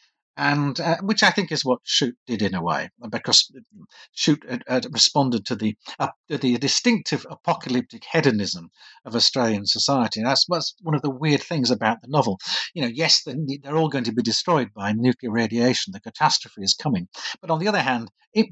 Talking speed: 190 wpm